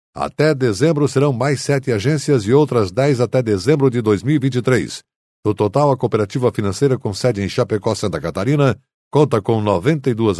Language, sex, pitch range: Portuguese, male, 110-135 Hz